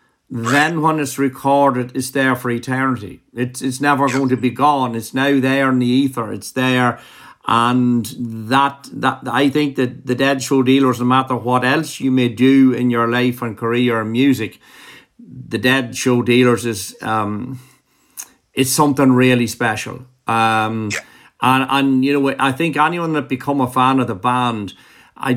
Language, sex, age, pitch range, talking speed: English, male, 50-69, 120-135 Hz, 175 wpm